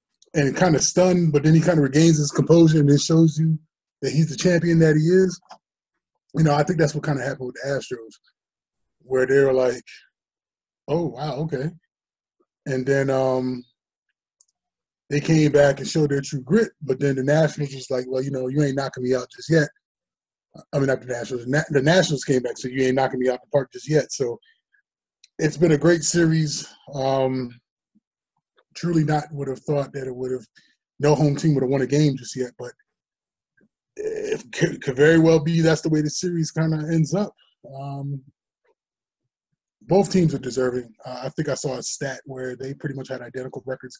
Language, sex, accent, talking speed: English, male, American, 200 wpm